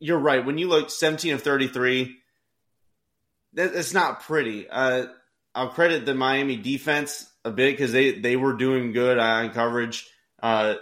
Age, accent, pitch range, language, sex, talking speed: 30-49, American, 115-135 Hz, English, male, 155 wpm